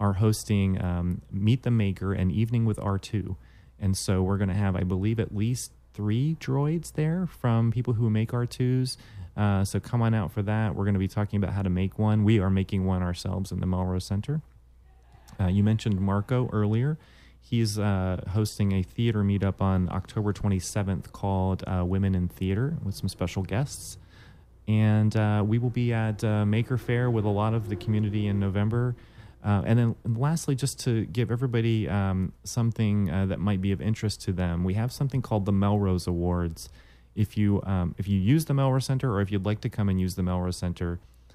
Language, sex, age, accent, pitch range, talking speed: English, male, 30-49, American, 95-115 Hz, 200 wpm